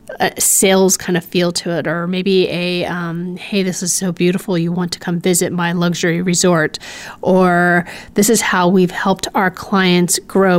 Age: 30-49